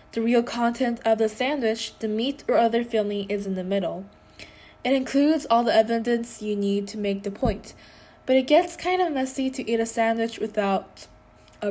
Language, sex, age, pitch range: Korean, female, 10-29, 205-235 Hz